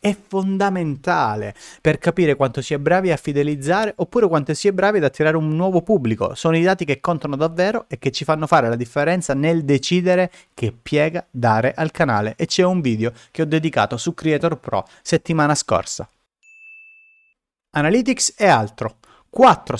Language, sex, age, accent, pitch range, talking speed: Italian, male, 30-49, native, 140-190 Hz, 170 wpm